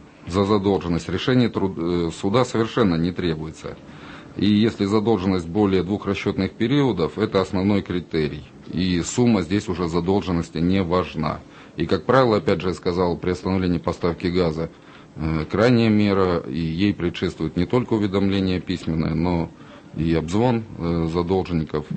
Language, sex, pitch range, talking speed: Russian, male, 85-105 Hz, 135 wpm